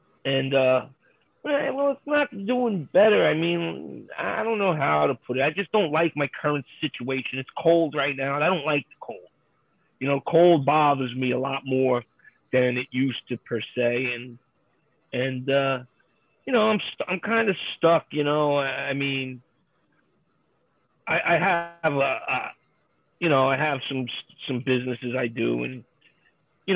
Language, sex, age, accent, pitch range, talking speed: English, male, 30-49, American, 135-170 Hz, 175 wpm